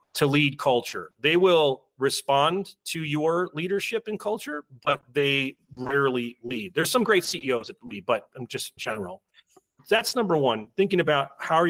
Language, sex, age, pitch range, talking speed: English, male, 40-59, 125-160 Hz, 165 wpm